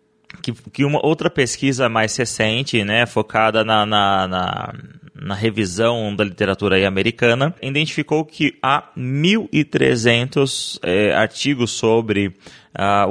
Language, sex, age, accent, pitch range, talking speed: Portuguese, male, 20-39, Brazilian, 110-155 Hz, 120 wpm